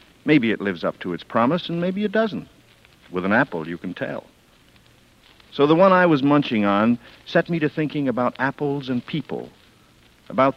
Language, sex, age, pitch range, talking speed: English, male, 60-79, 105-150 Hz, 185 wpm